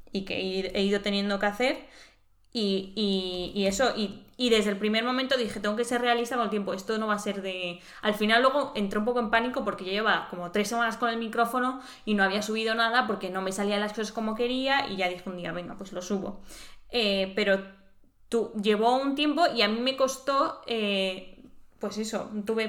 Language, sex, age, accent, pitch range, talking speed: Spanish, female, 10-29, Spanish, 200-250 Hz, 220 wpm